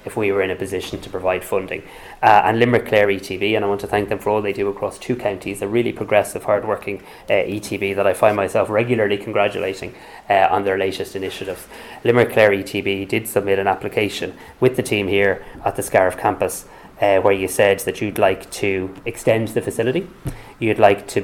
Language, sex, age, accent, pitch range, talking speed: English, male, 20-39, Irish, 100-110 Hz, 205 wpm